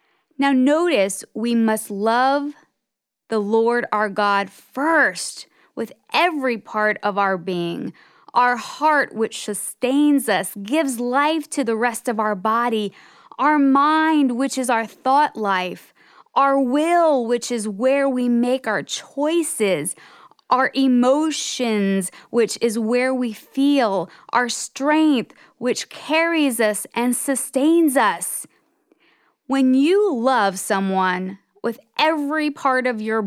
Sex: female